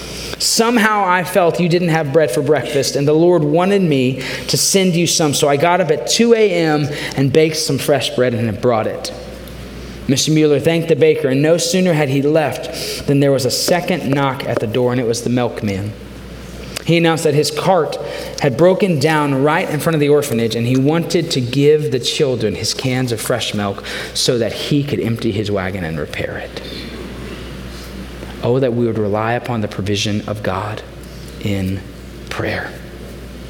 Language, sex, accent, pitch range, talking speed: English, male, American, 120-175 Hz, 190 wpm